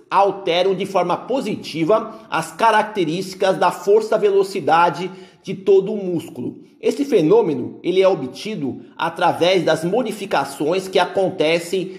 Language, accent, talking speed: Portuguese, Brazilian, 105 wpm